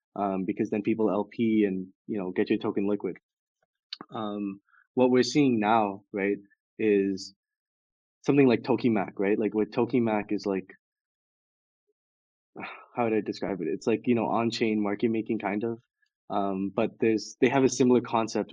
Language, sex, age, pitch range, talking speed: English, male, 20-39, 105-120 Hz, 160 wpm